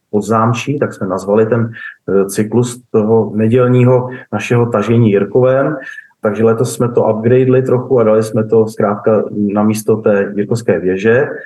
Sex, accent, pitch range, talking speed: male, native, 105-120 Hz, 140 wpm